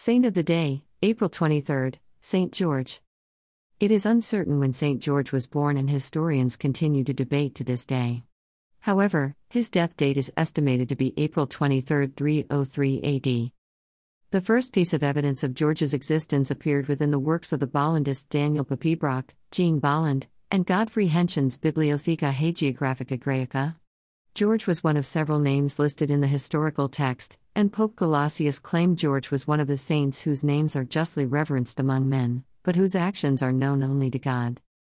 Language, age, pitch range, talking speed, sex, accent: Malayalam, 50-69, 135-160 Hz, 165 wpm, female, American